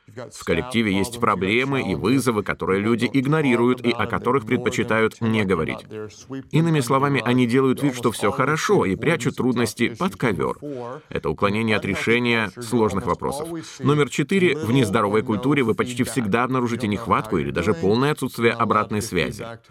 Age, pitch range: 30-49, 105-135 Hz